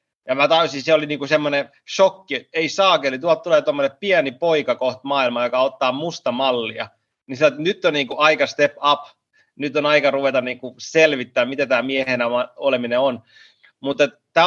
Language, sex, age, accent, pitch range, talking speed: Finnish, male, 30-49, native, 125-165 Hz, 185 wpm